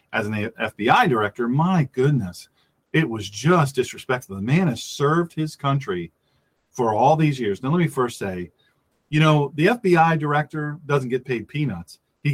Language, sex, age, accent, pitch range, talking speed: English, male, 40-59, American, 115-150 Hz, 170 wpm